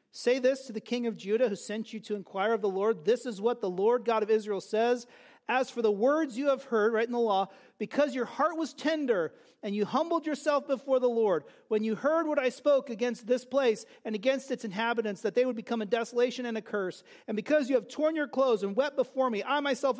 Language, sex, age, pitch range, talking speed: English, male, 40-59, 195-255 Hz, 245 wpm